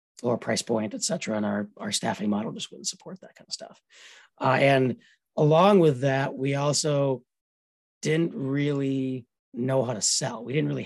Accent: American